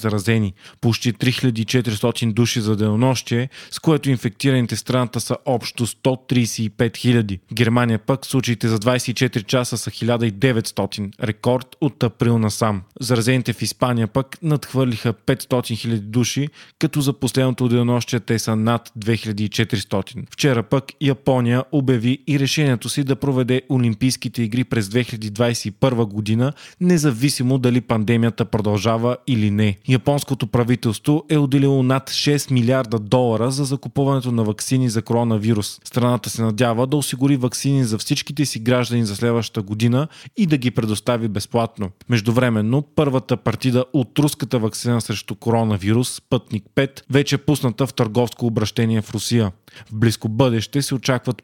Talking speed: 140 wpm